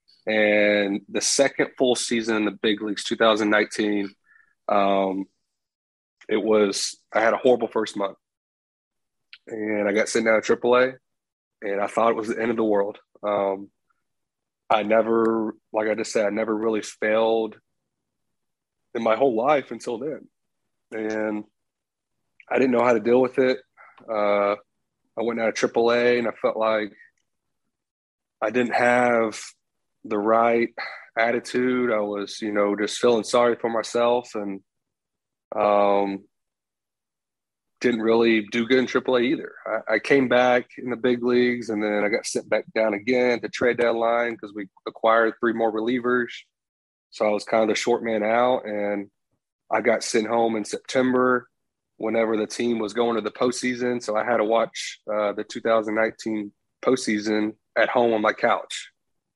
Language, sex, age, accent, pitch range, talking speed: English, male, 30-49, American, 105-120 Hz, 160 wpm